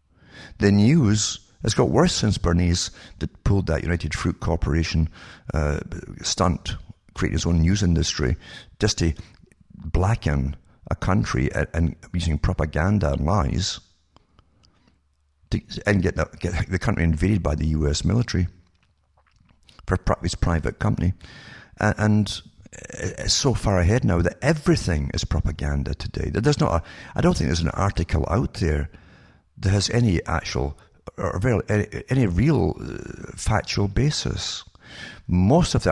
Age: 60-79